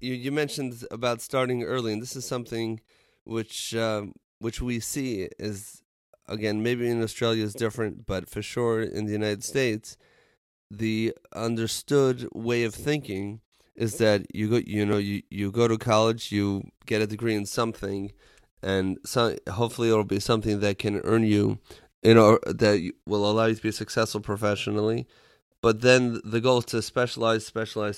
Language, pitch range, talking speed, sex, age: English, 105-115 Hz, 170 wpm, male, 30-49